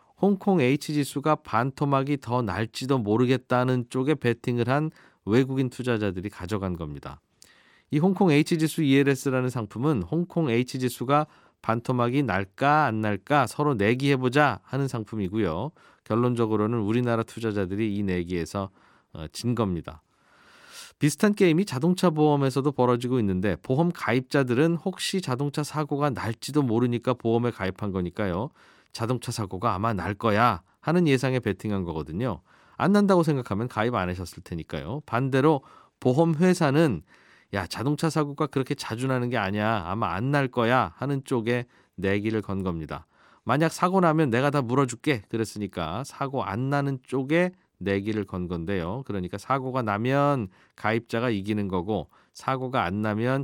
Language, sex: Korean, male